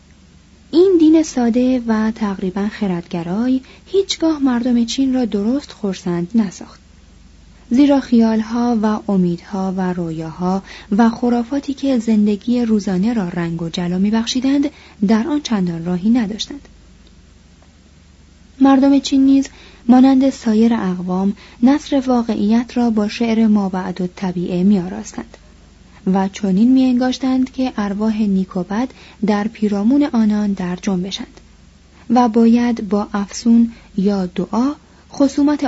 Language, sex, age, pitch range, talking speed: Persian, female, 30-49, 195-250 Hz, 115 wpm